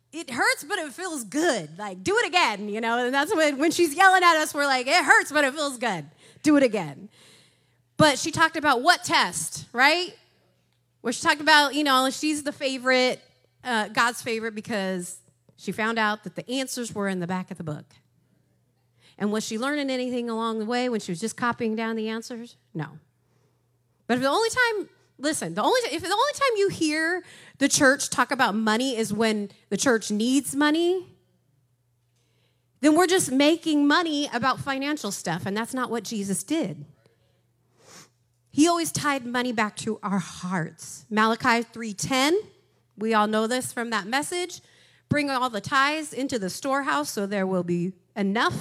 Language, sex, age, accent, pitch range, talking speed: English, female, 30-49, American, 190-295 Hz, 185 wpm